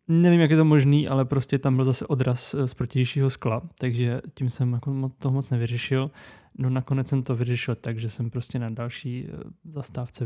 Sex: male